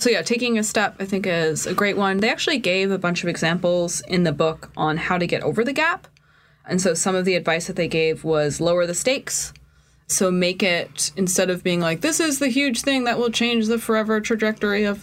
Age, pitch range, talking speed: 20-39, 155-205 Hz, 240 wpm